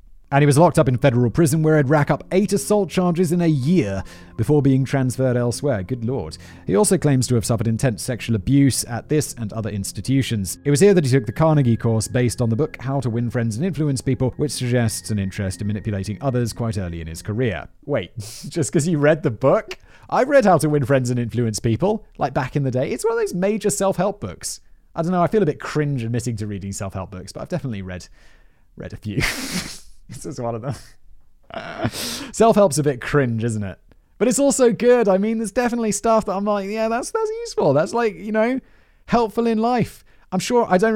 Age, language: 30-49, English